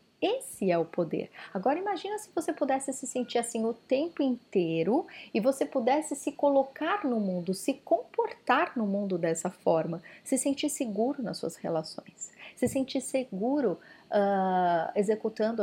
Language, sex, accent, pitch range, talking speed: Portuguese, female, Brazilian, 185-265 Hz, 150 wpm